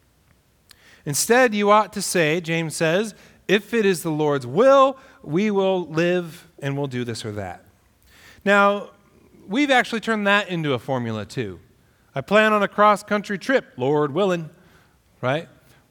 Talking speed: 150 wpm